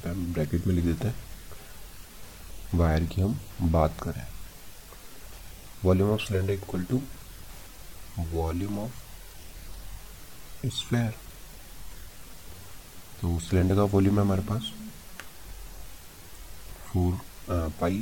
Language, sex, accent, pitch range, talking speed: Hindi, male, native, 85-100 Hz, 85 wpm